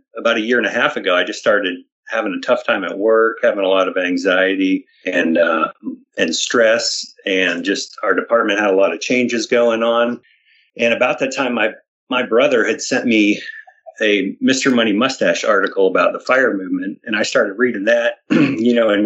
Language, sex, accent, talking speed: English, male, American, 200 wpm